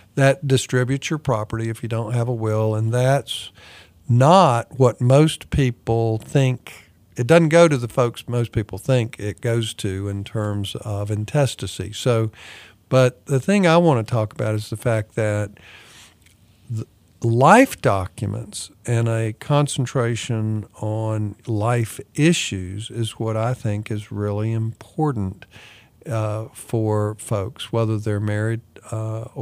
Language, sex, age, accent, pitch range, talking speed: English, male, 50-69, American, 110-135 Hz, 140 wpm